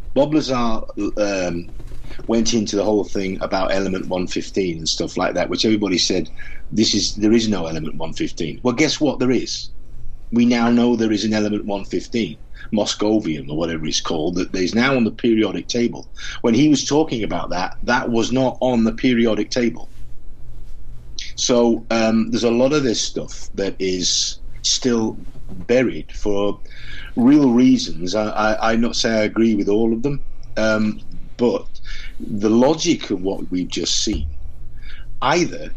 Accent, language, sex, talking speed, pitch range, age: British, English, male, 180 wpm, 90-120 Hz, 50-69